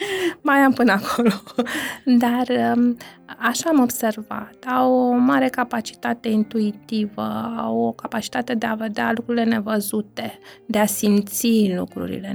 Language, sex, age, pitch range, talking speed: Romanian, female, 20-39, 200-240 Hz, 120 wpm